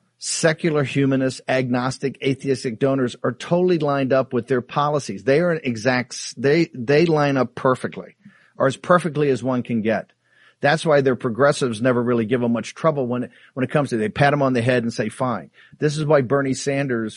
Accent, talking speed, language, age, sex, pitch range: American, 205 wpm, English, 50-69, male, 120-150 Hz